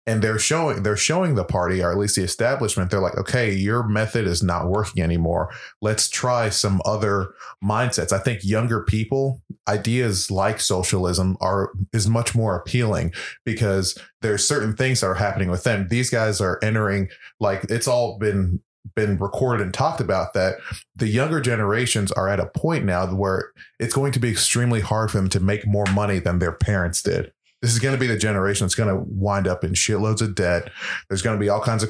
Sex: male